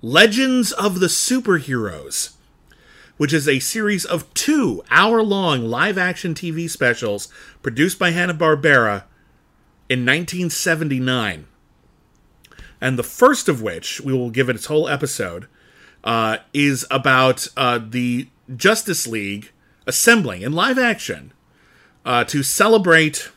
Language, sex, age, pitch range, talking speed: English, male, 30-49, 125-180 Hz, 125 wpm